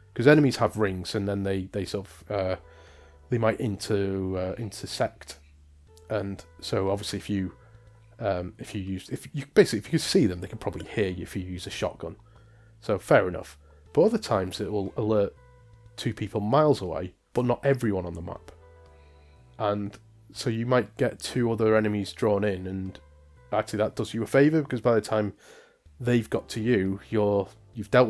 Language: English